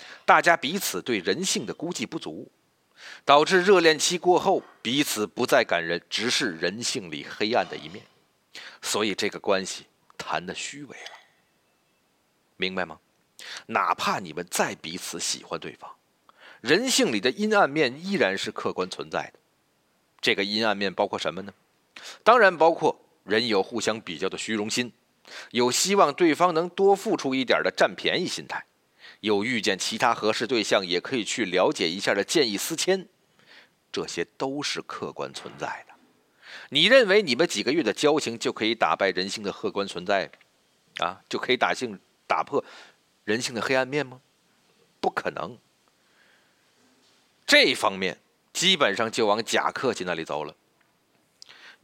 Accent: native